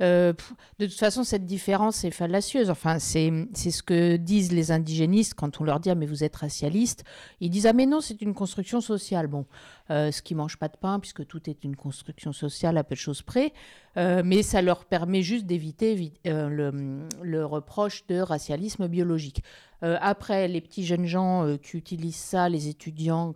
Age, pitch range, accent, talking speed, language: 50-69, 160-205 Hz, French, 195 wpm, French